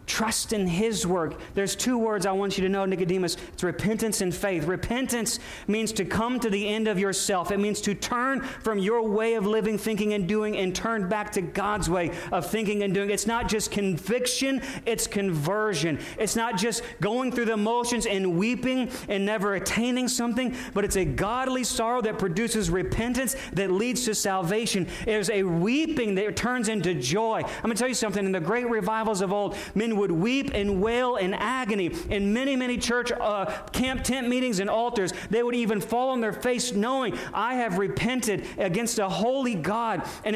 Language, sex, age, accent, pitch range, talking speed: English, male, 40-59, American, 195-240 Hz, 195 wpm